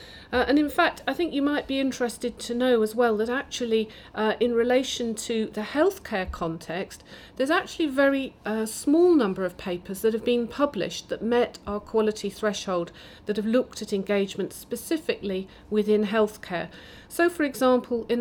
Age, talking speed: 40-59, 175 wpm